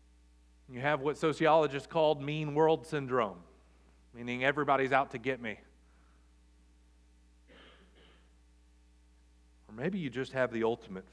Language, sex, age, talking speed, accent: English, male, 40-59, 115 wpm, American